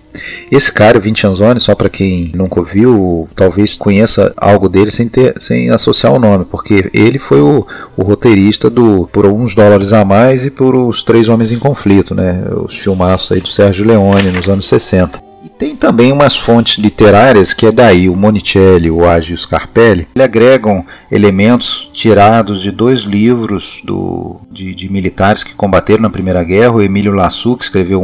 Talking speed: 180 wpm